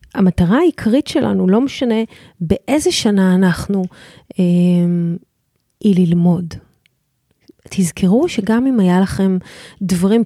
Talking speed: 100 wpm